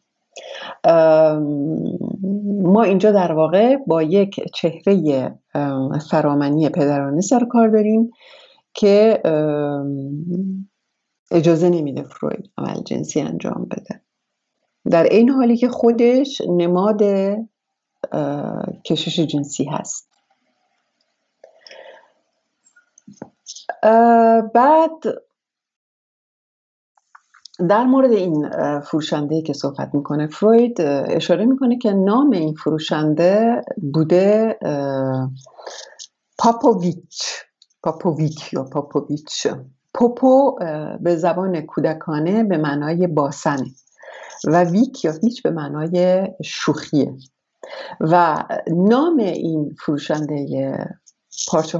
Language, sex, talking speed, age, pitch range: English, female, 80 wpm, 60-79, 150-220 Hz